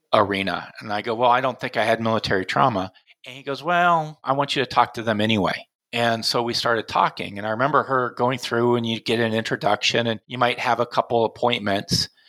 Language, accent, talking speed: English, American, 230 wpm